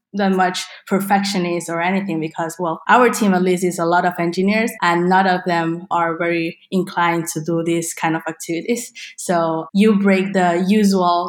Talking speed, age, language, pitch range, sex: 180 wpm, 20-39, English, 165-190 Hz, female